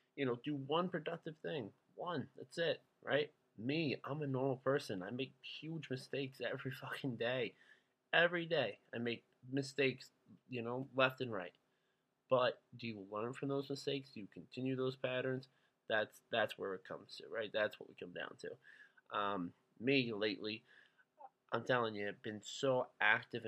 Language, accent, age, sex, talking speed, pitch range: English, American, 20-39, male, 170 wpm, 110-130 Hz